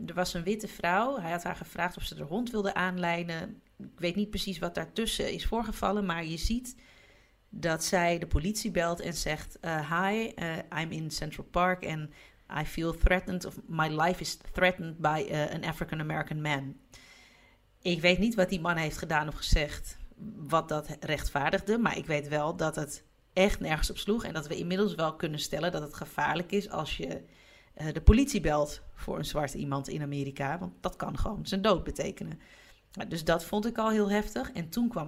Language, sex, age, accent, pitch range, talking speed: Dutch, female, 30-49, Dutch, 150-200 Hz, 200 wpm